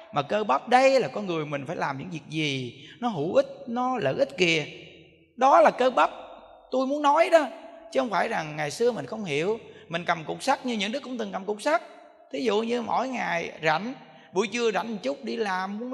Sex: male